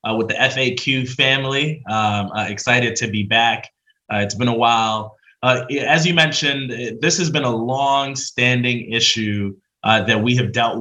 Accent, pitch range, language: American, 110-130 Hz, English